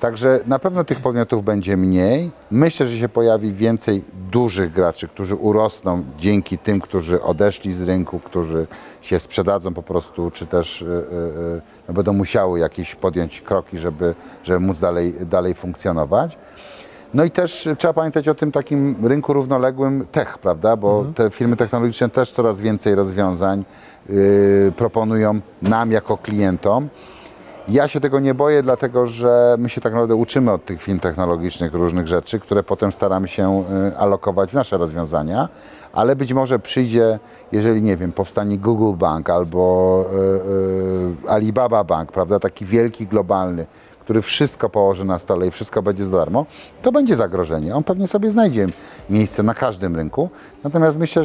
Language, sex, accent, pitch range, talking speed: Polish, male, native, 95-125 Hz, 150 wpm